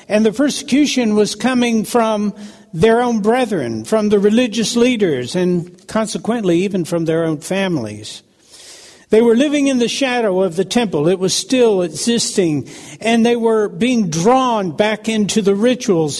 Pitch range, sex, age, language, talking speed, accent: 195-245 Hz, male, 60-79, English, 155 wpm, American